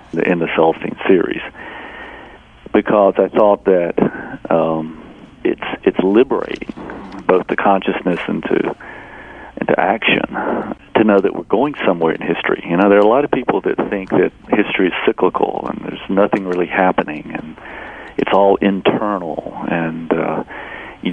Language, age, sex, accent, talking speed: English, 50-69, male, American, 155 wpm